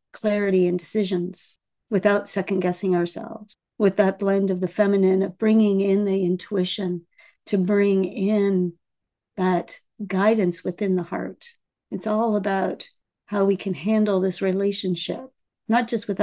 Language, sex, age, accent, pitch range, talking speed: English, female, 50-69, American, 180-200 Hz, 140 wpm